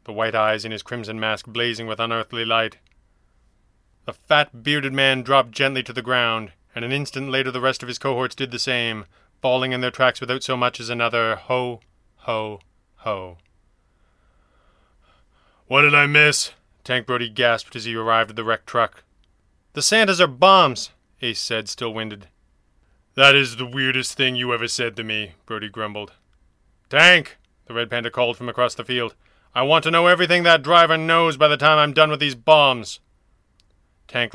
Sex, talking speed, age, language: male, 180 wpm, 30-49, English